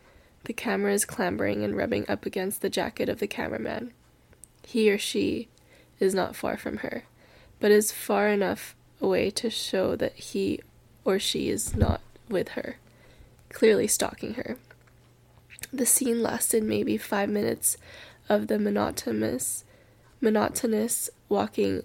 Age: 10-29